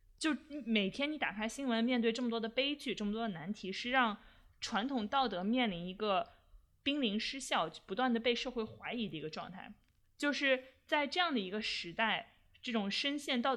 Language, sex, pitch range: Chinese, female, 200-255 Hz